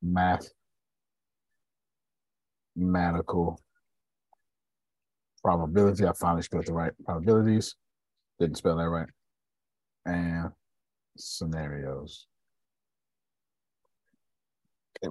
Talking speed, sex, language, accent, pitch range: 65 wpm, male, English, American, 85-135 Hz